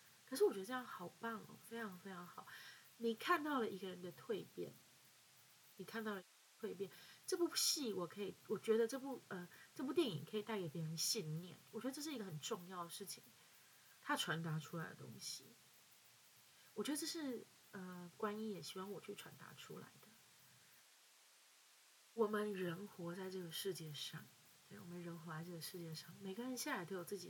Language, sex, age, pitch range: Chinese, female, 20-39, 170-220 Hz